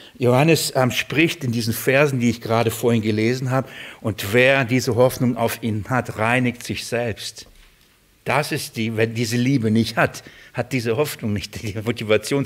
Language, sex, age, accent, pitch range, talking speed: German, male, 60-79, German, 105-135 Hz, 175 wpm